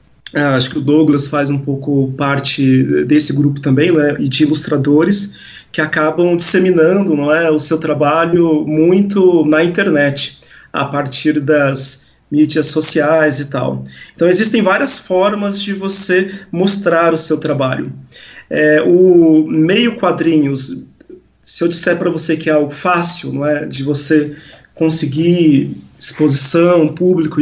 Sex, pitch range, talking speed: male, 145-180 Hz, 140 wpm